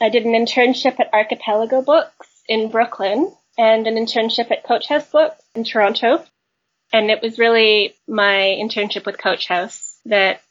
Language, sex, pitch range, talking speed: English, female, 200-230 Hz, 160 wpm